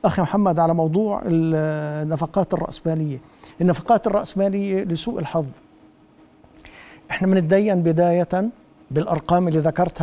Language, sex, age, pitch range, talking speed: Arabic, male, 60-79, 150-180 Hz, 95 wpm